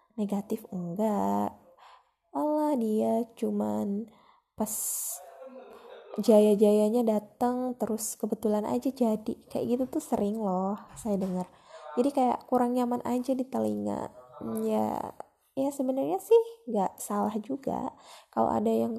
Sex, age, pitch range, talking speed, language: female, 10-29, 200-250 Hz, 115 wpm, Indonesian